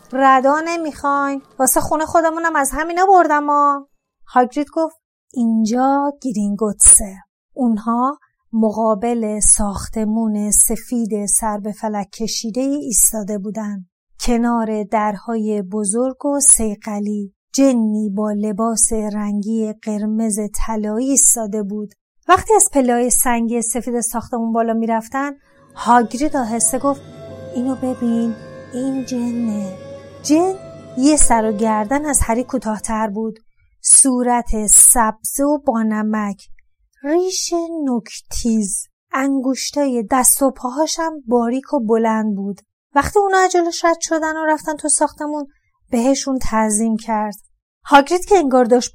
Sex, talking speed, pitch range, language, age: female, 110 wpm, 220-280 Hz, Persian, 30-49